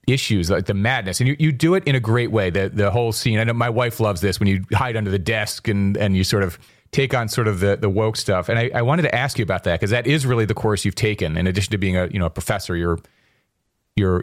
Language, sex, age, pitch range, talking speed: English, male, 30-49, 100-125 Hz, 295 wpm